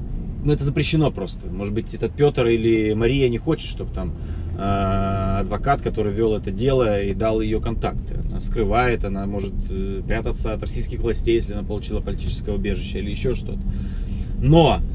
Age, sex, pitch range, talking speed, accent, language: 20-39, male, 100-125 Hz, 165 wpm, native, Russian